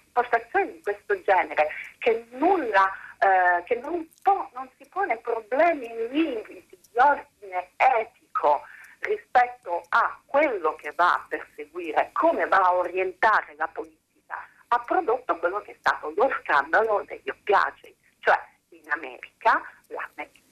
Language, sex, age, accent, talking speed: Italian, female, 50-69, native, 130 wpm